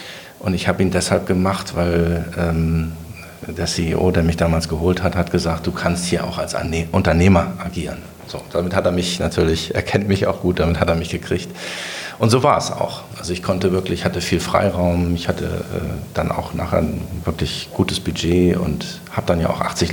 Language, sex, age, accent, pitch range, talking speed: German, male, 50-69, German, 85-100 Hz, 210 wpm